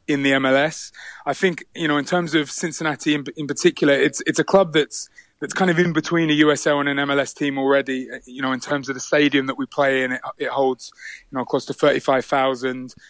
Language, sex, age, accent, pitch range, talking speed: English, male, 20-39, British, 130-145 Hz, 240 wpm